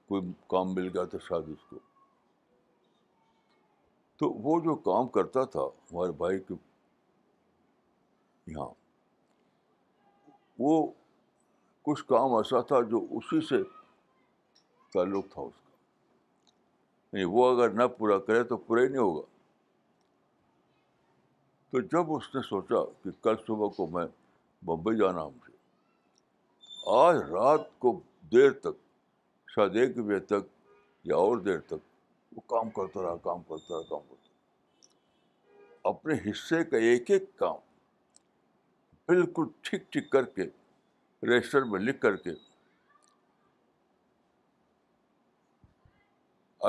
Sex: male